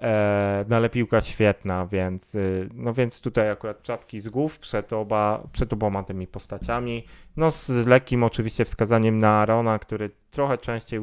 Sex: male